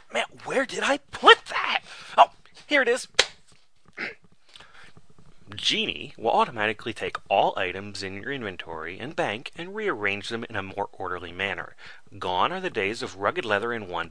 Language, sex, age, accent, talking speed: English, male, 30-49, American, 155 wpm